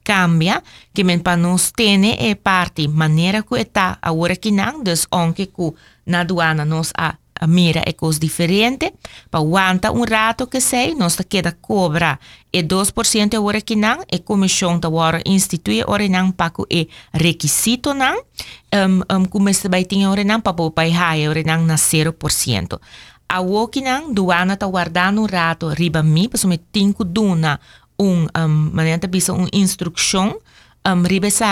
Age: 30-49